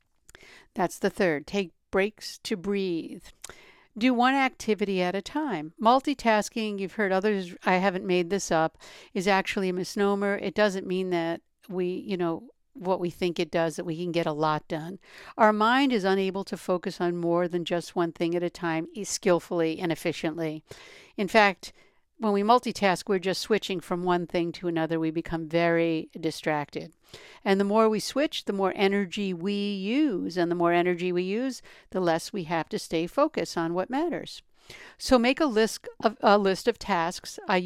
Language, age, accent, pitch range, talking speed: English, 60-79, American, 175-215 Hz, 185 wpm